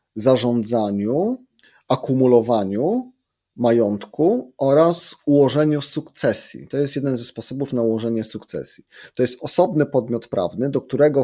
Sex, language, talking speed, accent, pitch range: male, Polish, 110 wpm, native, 110-140 Hz